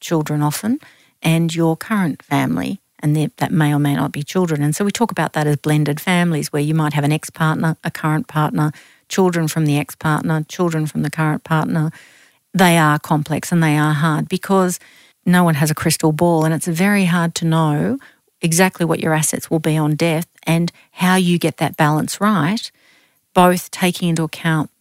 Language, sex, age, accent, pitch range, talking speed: English, female, 50-69, Australian, 150-175 Hz, 195 wpm